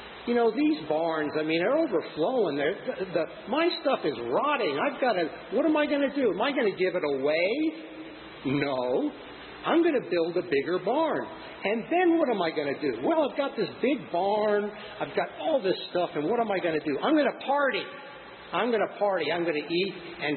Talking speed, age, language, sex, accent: 230 wpm, 50-69, English, male, American